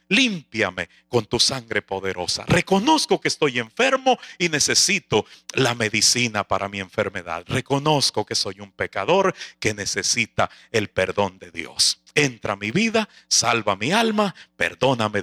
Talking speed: 140 wpm